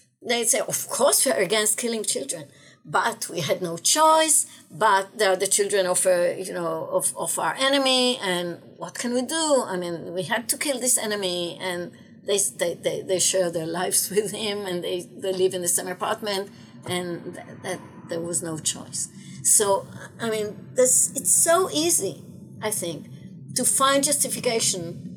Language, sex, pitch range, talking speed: English, female, 175-240 Hz, 180 wpm